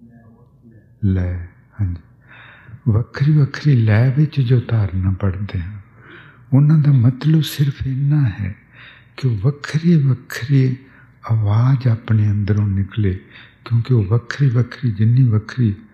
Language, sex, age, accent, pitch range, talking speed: English, male, 60-79, Indian, 105-130 Hz, 115 wpm